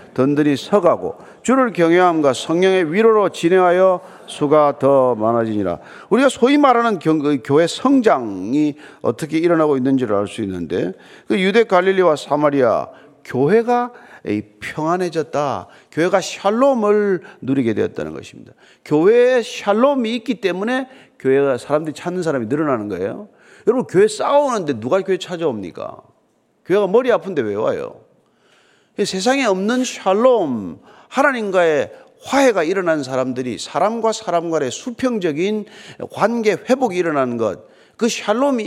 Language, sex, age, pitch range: Korean, male, 40-59, 155-245 Hz